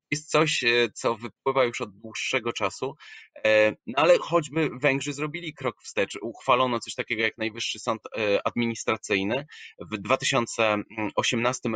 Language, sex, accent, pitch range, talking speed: Polish, male, native, 105-135 Hz, 120 wpm